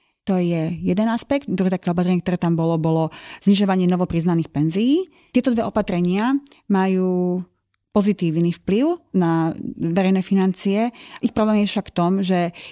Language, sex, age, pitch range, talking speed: Slovak, female, 30-49, 175-205 Hz, 140 wpm